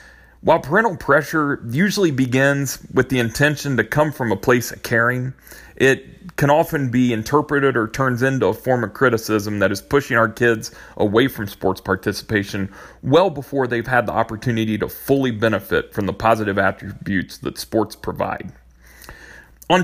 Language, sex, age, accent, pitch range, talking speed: English, male, 40-59, American, 110-145 Hz, 160 wpm